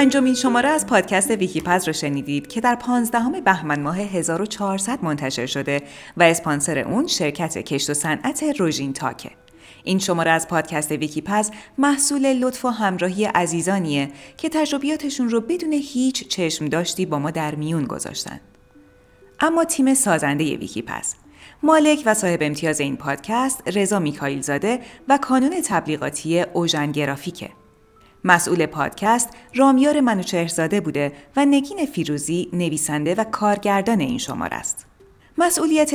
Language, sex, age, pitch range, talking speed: Persian, female, 30-49, 150-245 Hz, 135 wpm